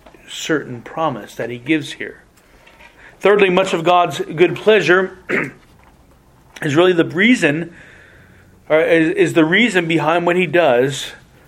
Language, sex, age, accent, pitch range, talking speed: English, male, 40-59, American, 130-180 Hz, 130 wpm